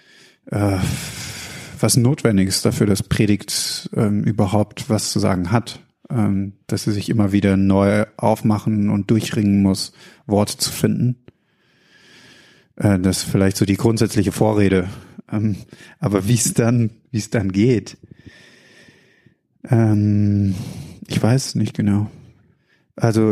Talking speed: 125 wpm